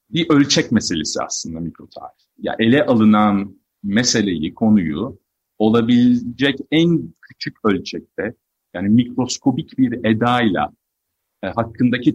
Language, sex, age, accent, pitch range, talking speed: Turkish, male, 40-59, native, 100-130 Hz, 110 wpm